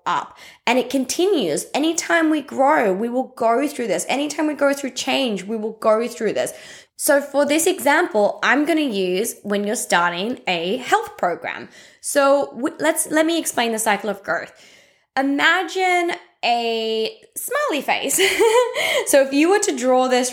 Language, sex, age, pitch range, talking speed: English, female, 10-29, 220-365 Hz, 160 wpm